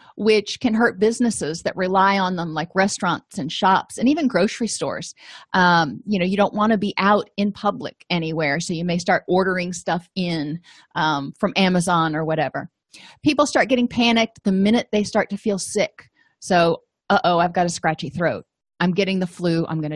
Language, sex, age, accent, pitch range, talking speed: English, female, 30-49, American, 180-230 Hz, 195 wpm